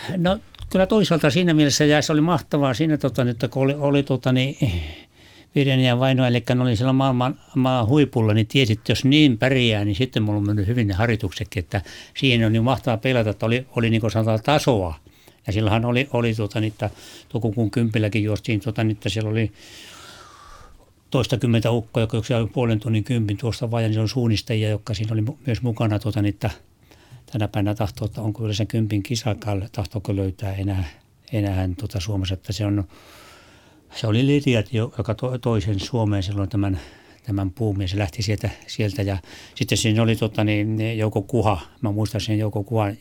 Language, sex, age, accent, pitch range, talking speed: Finnish, male, 60-79, native, 105-125 Hz, 170 wpm